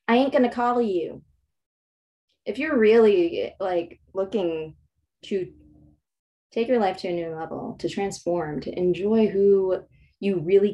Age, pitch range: 20-39, 170-230 Hz